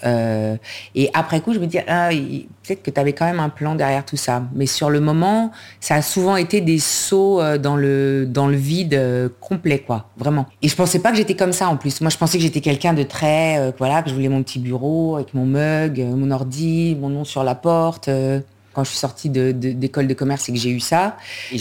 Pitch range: 130-170 Hz